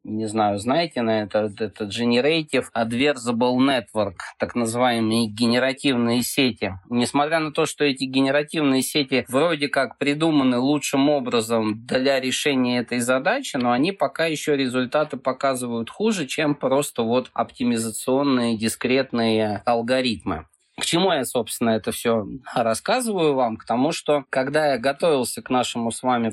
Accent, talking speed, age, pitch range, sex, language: native, 130 wpm, 20-39, 115-150 Hz, male, Russian